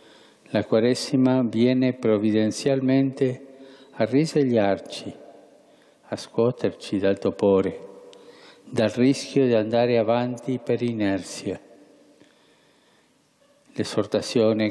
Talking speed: 75 wpm